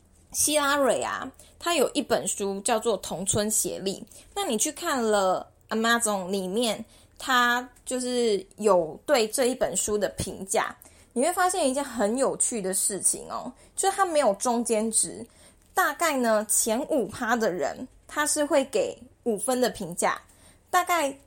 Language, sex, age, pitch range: Chinese, female, 20-39, 210-295 Hz